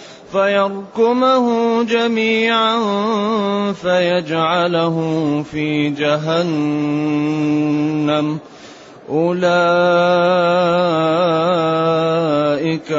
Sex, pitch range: male, 160-200 Hz